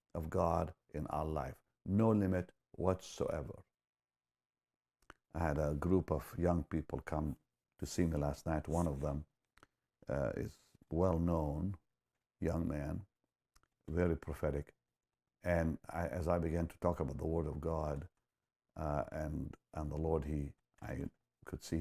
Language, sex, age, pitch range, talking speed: English, male, 60-79, 70-85 Hz, 145 wpm